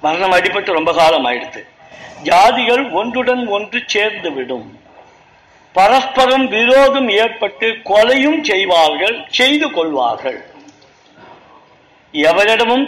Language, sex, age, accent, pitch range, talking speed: Tamil, male, 60-79, native, 190-270 Hz, 80 wpm